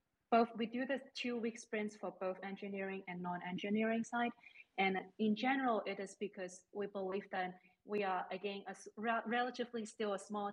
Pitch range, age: 180-210 Hz, 20-39